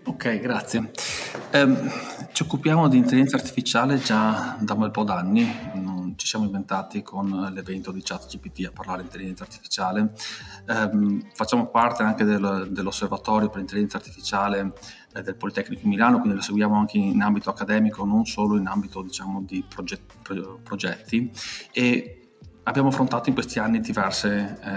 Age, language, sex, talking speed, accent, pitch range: 30-49, Italian, male, 150 wpm, native, 100-150 Hz